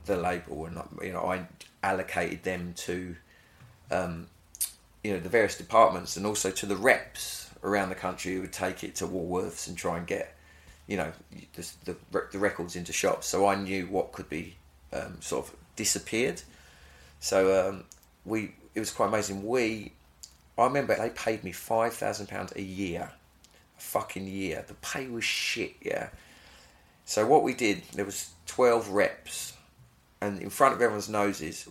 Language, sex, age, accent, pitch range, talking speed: English, male, 30-49, British, 85-105 Hz, 170 wpm